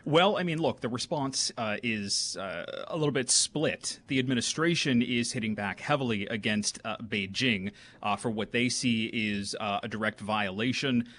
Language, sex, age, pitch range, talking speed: English, male, 30-49, 110-130 Hz, 170 wpm